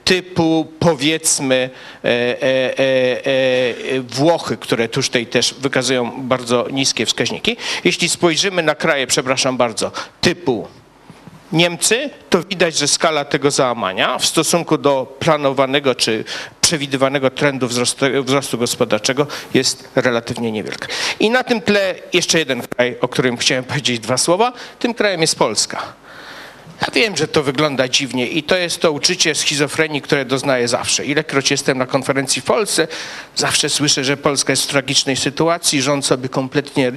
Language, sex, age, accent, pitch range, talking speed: Polish, male, 50-69, native, 130-170 Hz, 140 wpm